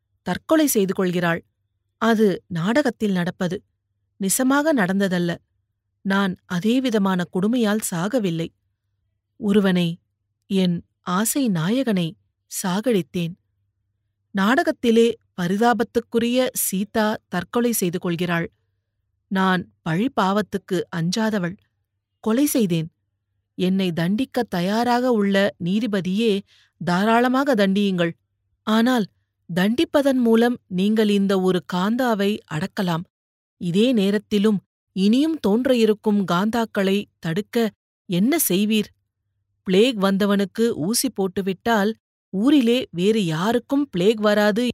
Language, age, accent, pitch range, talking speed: Tamil, 30-49, native, 175-240 Hz, 80 wpm